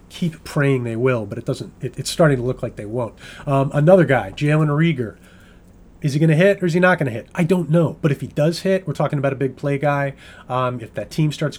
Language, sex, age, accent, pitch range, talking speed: English, male, 30-49, American, 135-165 Hz, 270 wpm